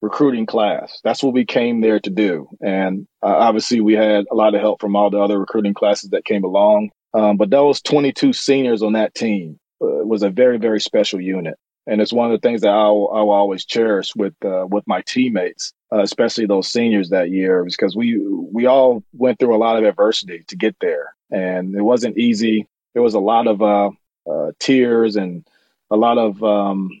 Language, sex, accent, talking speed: English, male, American, 220 wpm